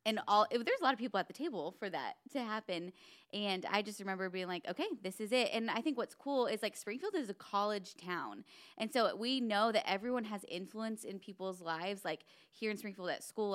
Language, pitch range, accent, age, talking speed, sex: English, 185-220 Hz, American, 20-39, 240 wpm, female